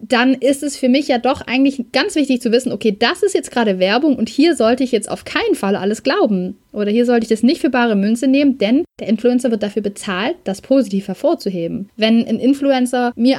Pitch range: 210-265 Hz